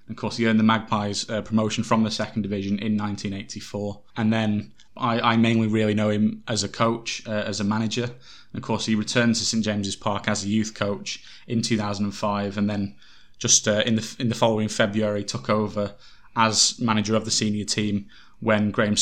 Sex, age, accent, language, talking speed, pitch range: male, 20-39, British, English, 200 wpm, 105-120 Hz